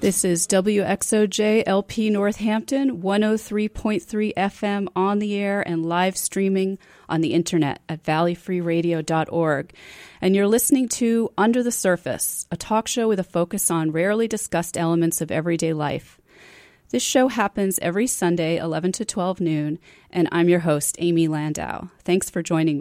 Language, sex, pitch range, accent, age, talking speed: English, female, 165-215 Hz, American, 30-49, 145 wpm